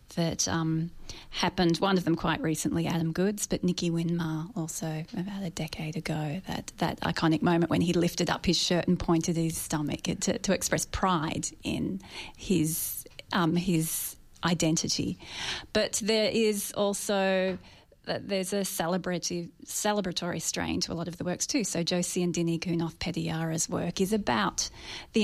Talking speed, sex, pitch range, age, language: 165 wpm, female, 165-190 Hz, 30-49, English